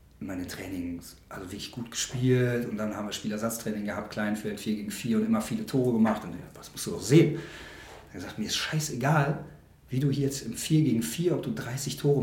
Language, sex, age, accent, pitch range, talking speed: German, male, 30-49, German, 110-145 Hz, 225 wpm